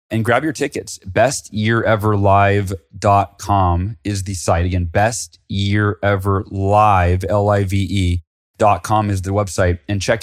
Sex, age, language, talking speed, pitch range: male, 30-49, English, 100 wpm, 100-130 Hz